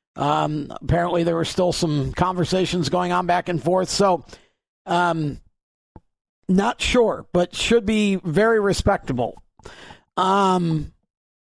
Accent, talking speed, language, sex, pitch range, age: American, 115 wpm, English, male, 165-200 Hz, 50-69